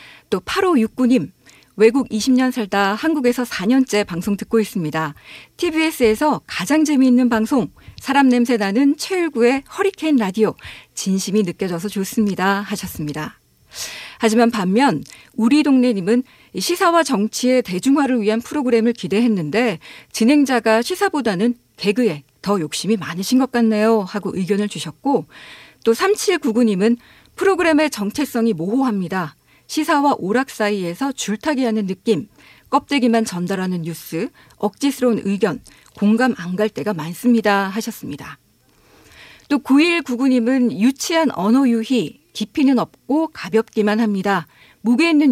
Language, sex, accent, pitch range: Korean, female, native, 200-265 Hz